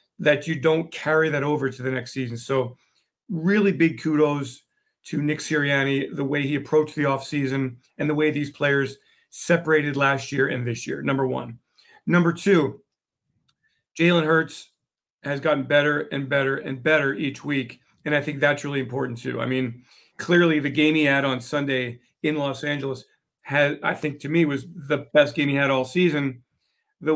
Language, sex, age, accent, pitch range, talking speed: English, male, 40-59, American, 140-160 Hz, 180 wpm